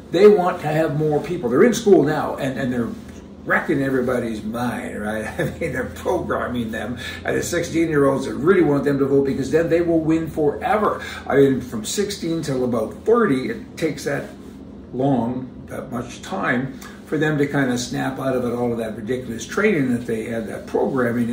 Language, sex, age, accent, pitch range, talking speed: English, male, 60-79, American, 125-165 Hz, 195 wpm